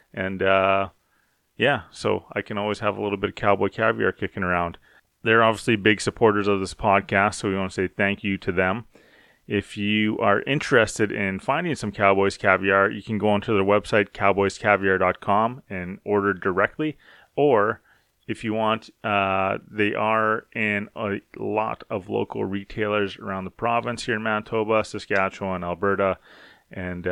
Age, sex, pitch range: 30-49, male, 95-110 Hz